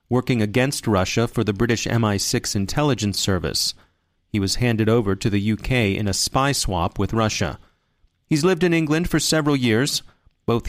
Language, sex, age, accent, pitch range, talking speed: English, male, 30-49, American, 105-135 Hz, 170 wpm